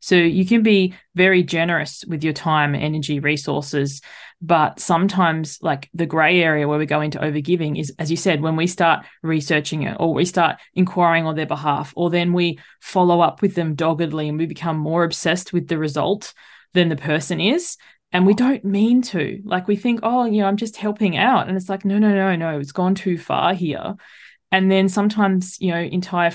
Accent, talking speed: Australian, 205 wpm